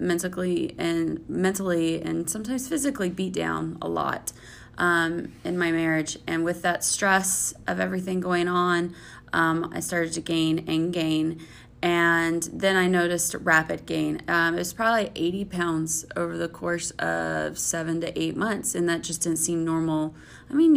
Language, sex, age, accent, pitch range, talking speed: English, female, 20-39, American, 160-190 Hz, 165 wpm